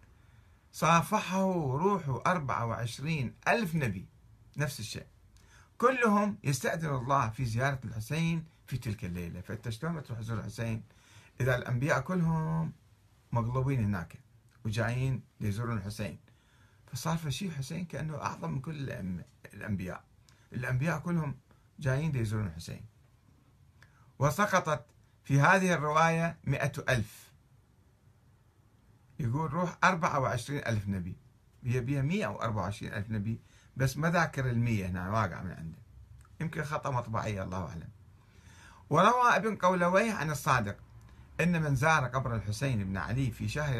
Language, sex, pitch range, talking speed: Arabic, male, 110-150 Hz, 115 wpm